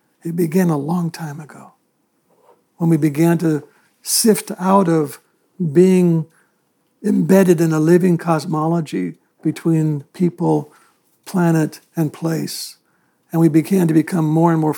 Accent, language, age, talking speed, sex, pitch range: American, English, 60-79, 130 wpm, male, 155-180 Hz